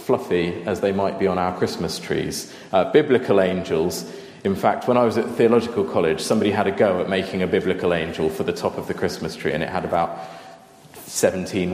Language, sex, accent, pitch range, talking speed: English, male, British, 90-130 Hz, 210 wpm